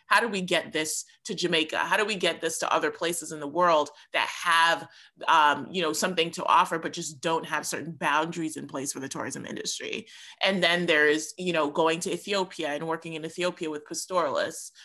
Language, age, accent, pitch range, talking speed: English, 30-49, American, 155-180 Hz, 215 wpm